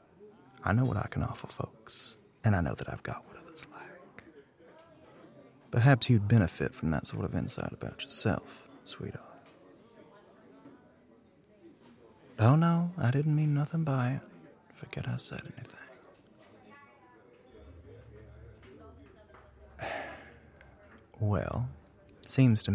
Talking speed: 115 wpm